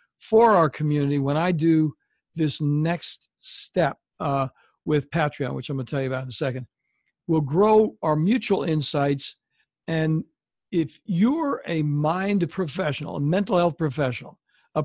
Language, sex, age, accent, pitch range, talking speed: English, male, 60-79, American, 145-185 Hz, 155 wpm